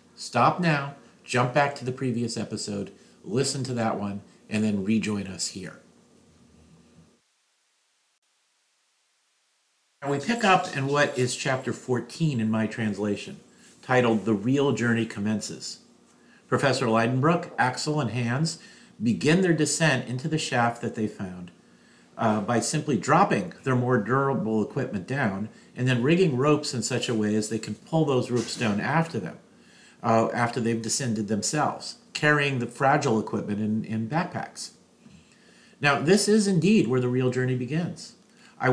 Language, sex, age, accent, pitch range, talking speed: English, male, 50-69, American, 110-150 Hz, 150 wpm